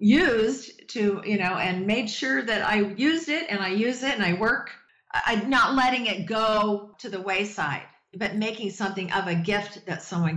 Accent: American